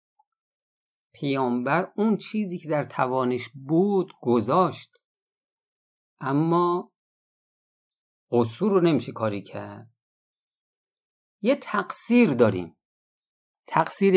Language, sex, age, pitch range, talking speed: Persian, male, 50-69, 110-160 Hz, 75 wpm